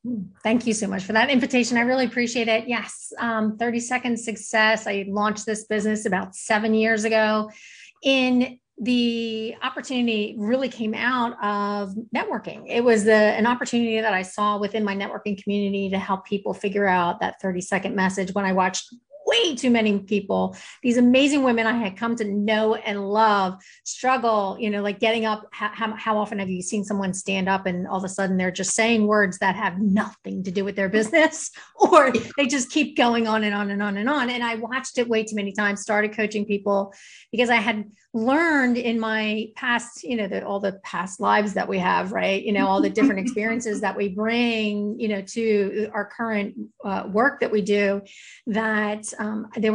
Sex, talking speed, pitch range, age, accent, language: female, 195 wpm, 205-235 Hz, 40-59, American, English